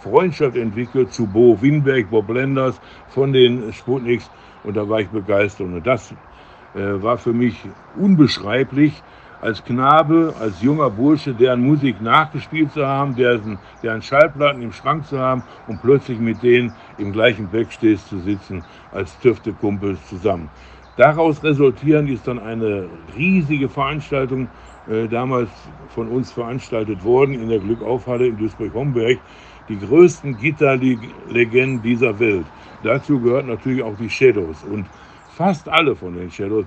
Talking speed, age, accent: 140 wpm, 60-79, German